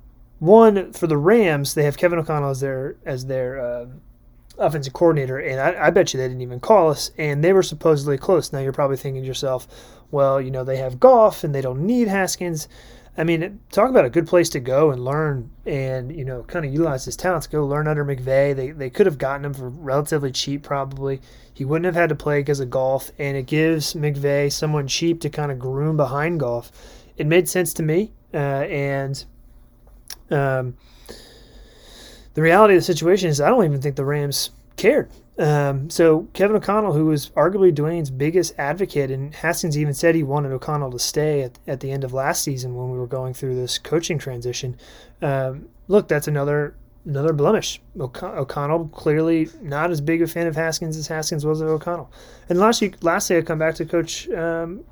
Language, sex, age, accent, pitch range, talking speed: English, male, 30-49, American, 135-165 Hz, 205 wpm